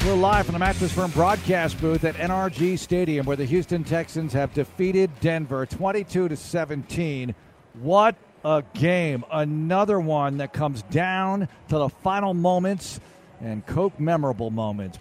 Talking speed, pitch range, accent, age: 140 wpm, 130-175 Hz, American, 50-69